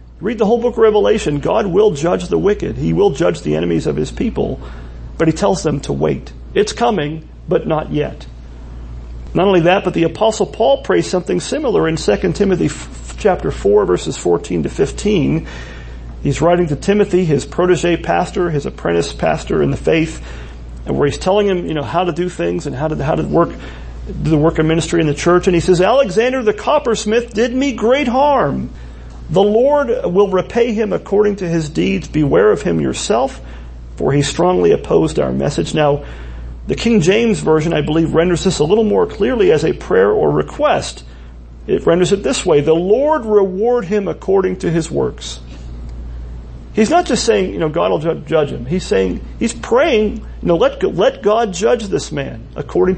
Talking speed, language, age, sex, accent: 195 wpm, English, 40-59, male, American